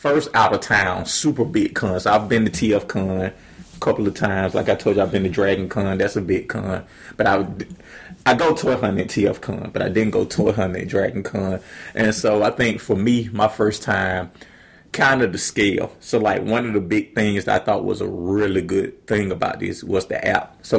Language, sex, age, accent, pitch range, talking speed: English, male, 30-49, American, 95-115 Hz, 235 wpm